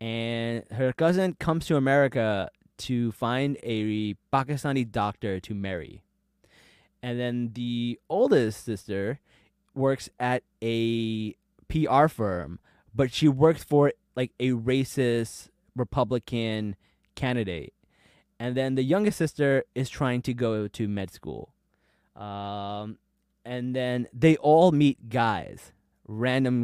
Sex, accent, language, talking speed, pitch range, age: male, American, English, 115 wpm, 115-155 Hz, 20-39